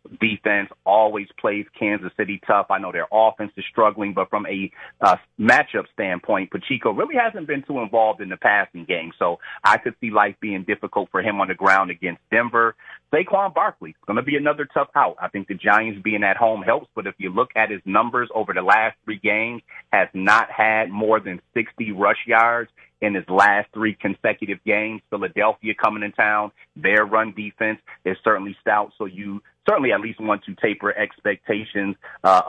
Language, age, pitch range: English, 30-49, 100-110 Hz